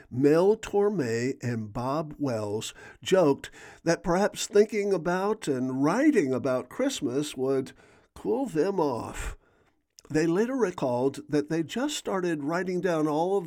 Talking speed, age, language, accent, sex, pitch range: 130 wpm, 50-69, English, American, male, 140-180 Hz